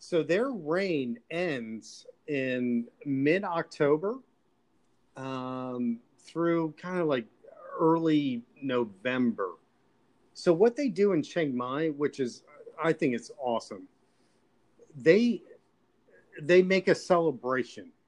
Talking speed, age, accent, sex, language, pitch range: 100 wpm, 40-59, American, male, English, 130-175 Hz